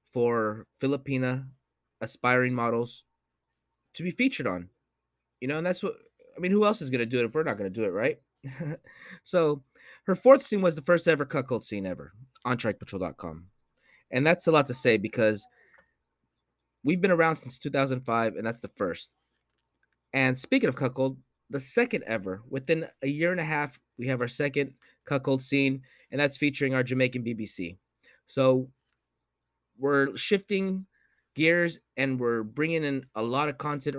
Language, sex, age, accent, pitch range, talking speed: English, male, 30-49, American, 115-160 Hz, 170 wpm